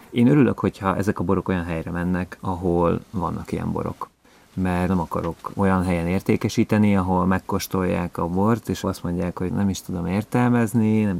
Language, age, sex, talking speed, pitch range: Hungarian, 30-49, male, 170 wpm, 90-100 Hz